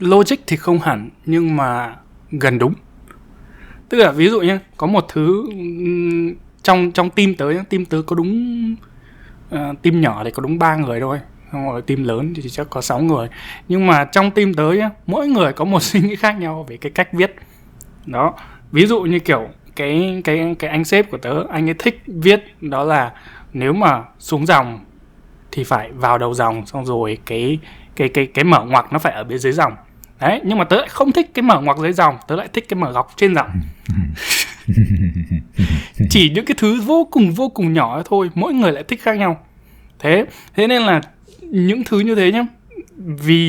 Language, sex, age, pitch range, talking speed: Vietnamese, male, 20-39, 135-185 Hz, 200 wpm